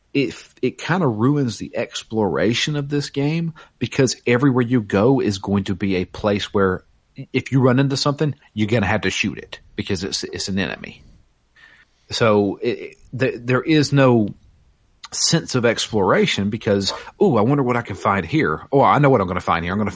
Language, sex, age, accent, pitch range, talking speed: English, male, 40-59, American, 100-130 Hz, 195 wpm